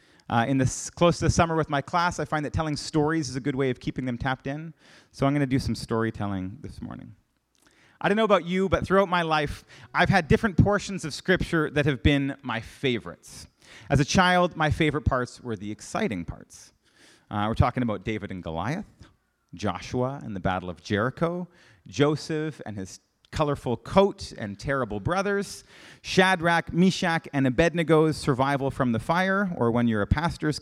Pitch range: 120-170 Hz